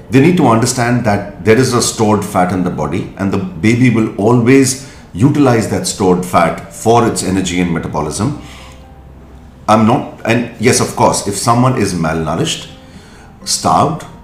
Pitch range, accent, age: 90-120 Hz, Indian, 40-59